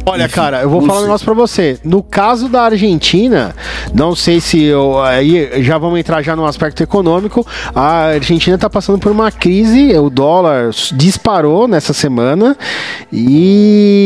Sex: male